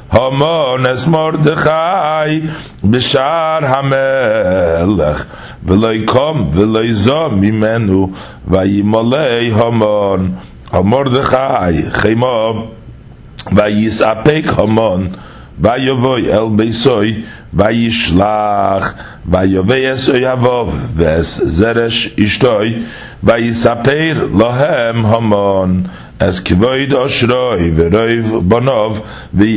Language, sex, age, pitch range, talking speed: English, male, 50-69, 100-125 Hz, 55 wpm